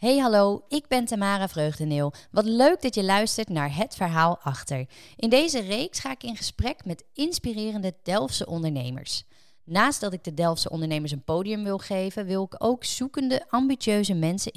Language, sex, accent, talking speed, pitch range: Dutch, female, Dutch, 175 wpm, 160-220 Hz